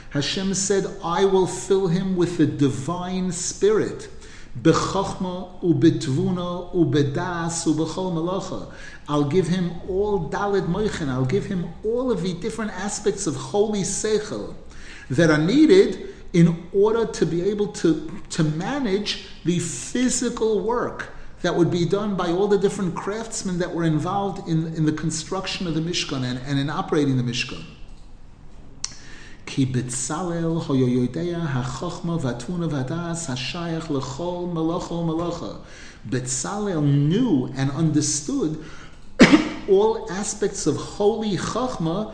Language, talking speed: English, 120 wpm